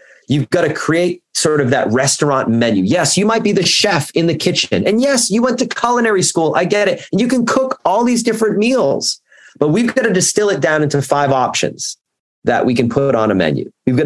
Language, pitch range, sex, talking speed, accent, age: English, 120-190 Hz, male, 235 wpm, American, 30-49